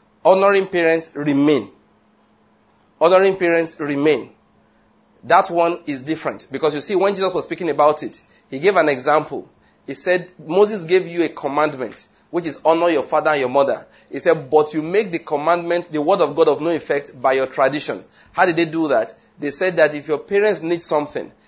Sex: male